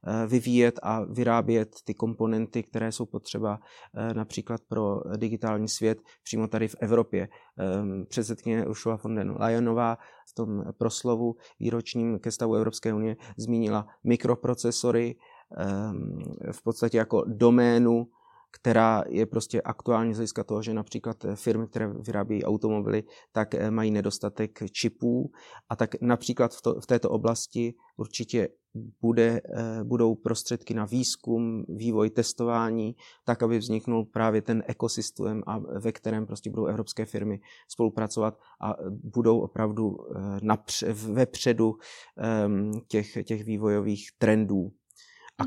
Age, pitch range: 30-49, 105-115 Hz